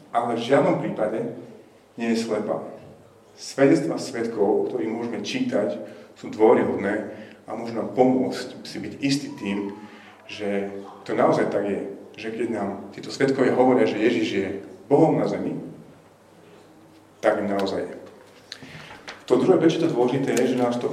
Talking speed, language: 145 wpm, Slovak